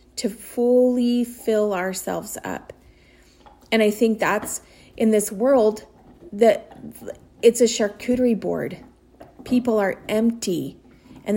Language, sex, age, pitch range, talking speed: English, female, 30-49, 190-230 Hz, 110 wpm